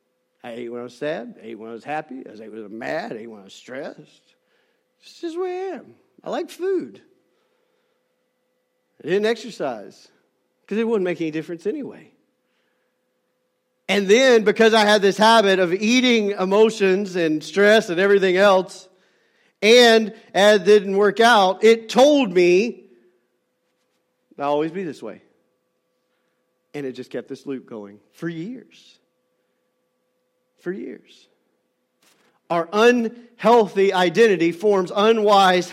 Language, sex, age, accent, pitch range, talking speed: English, male, 50-69, American, 150-220 Hz, 150 wpm